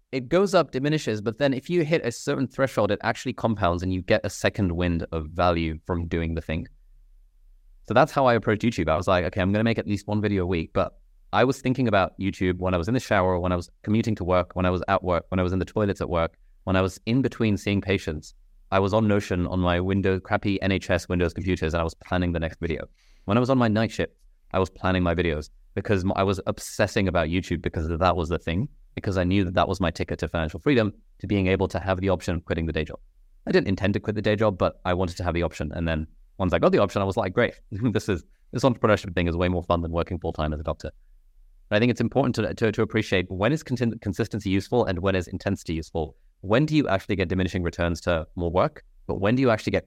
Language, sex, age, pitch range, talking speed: English, male, 20-39, 85-110 Hz, 270 wpm